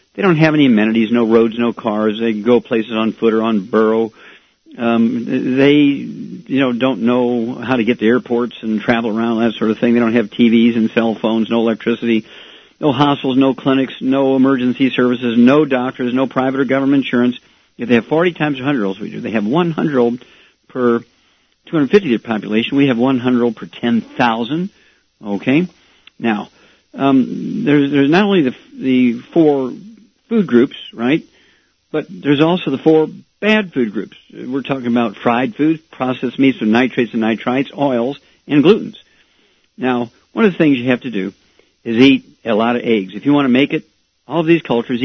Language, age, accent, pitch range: English, 50-69, American, 115-145 Hz